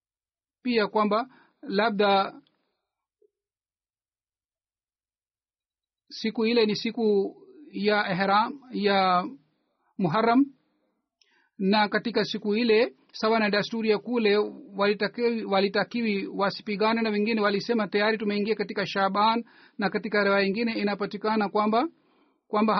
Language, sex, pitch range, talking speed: Swahili, male, 205-230 Hz, 95 wpm